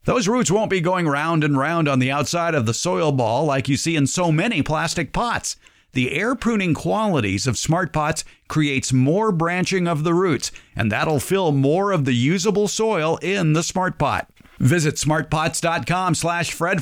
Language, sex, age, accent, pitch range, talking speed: English, male, 50-69, American, 135-180 Hz, 180 wpm